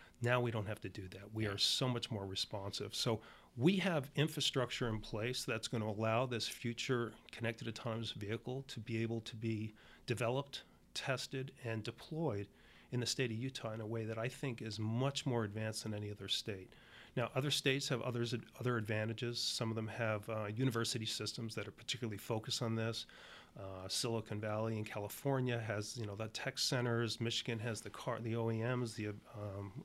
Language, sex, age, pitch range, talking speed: English, male, 40-59, 110-125 Hz, 190 wpm